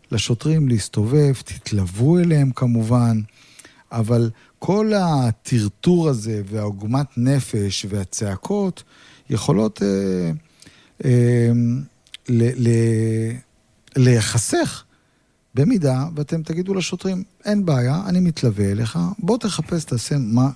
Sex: male